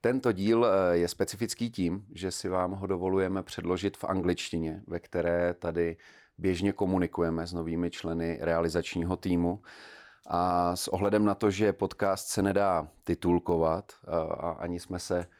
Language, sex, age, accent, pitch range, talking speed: Czech, male, 30-49, native, 80-95 Hz, 145 wpm